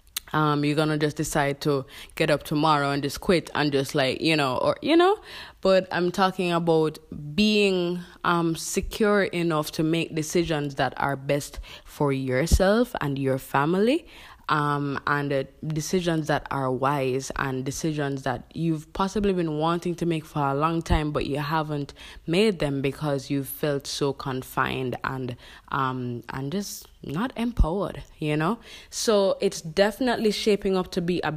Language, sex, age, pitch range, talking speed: English, female, 20-39, 140-175 Hz, 165 wpm